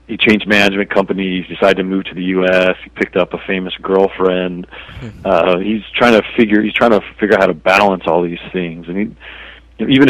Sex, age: male, 40-59